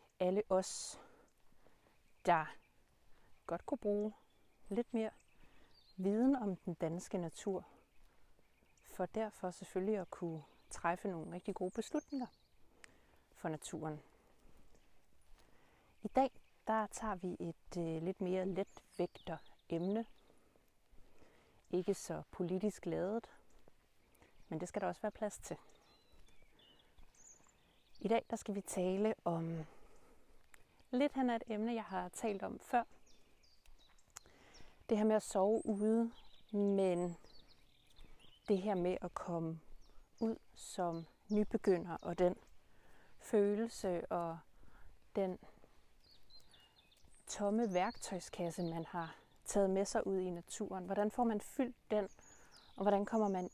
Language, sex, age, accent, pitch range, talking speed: Danish, female, 30-49, native, 175-215 Hz, 115 wpm